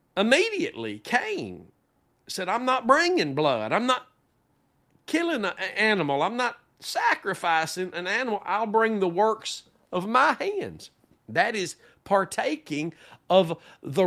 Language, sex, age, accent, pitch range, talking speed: English, male, 50-69, American, 160-225 Hz, 125 wpm